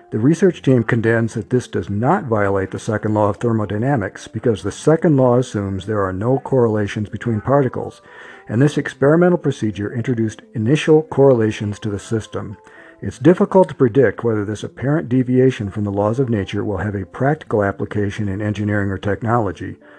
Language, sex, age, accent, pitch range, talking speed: English, male, 50-69, American, 100-130 Hz, 170 wpm